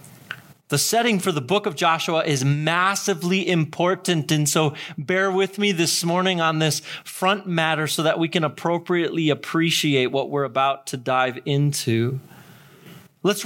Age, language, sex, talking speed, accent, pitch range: 30-49, English, male, 150 wpm, American, 150-185 Hz